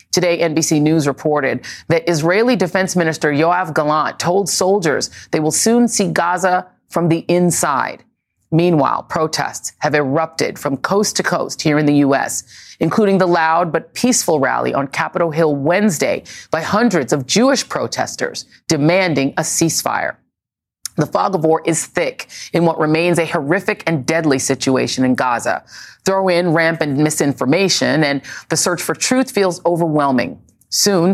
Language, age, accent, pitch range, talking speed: English, 30-49, American, 150-180 Hz, 150 wpm